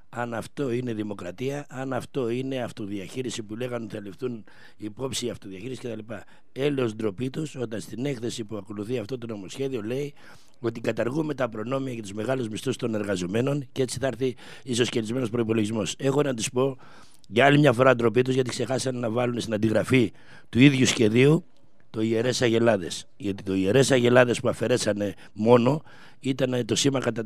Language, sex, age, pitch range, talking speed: Greek, male, 60-79, 110-130 Hz, 170 wpm